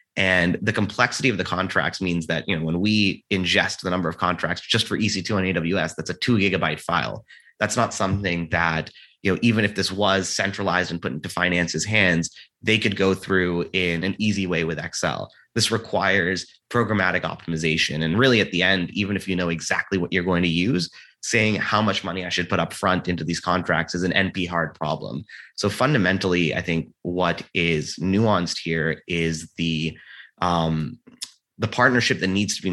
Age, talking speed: 30-49, 195 wpm